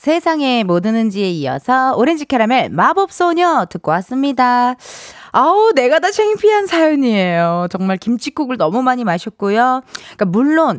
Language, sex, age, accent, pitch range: Korean, female, 20-39, native, 200-315 Hz